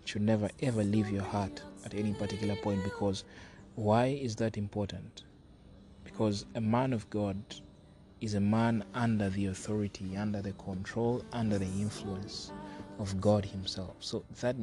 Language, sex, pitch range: English, male, 95-110 Hz